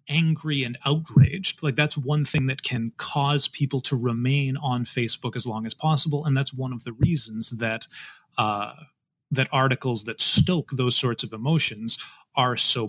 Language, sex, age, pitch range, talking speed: English, male, 30-49, 120-150 Hz, 170 wpm